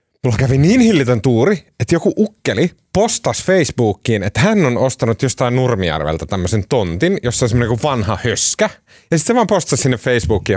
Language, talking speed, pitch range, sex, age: Finnish, 165 wpm, 120-185 Hz, male, 30-49